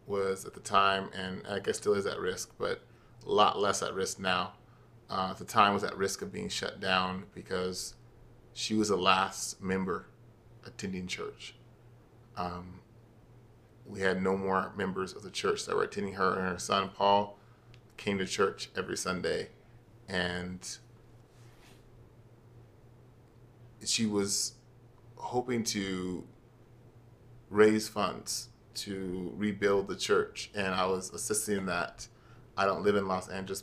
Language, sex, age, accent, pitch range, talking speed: English, male, 30-49, American, 95-120 Hz, 145 wpm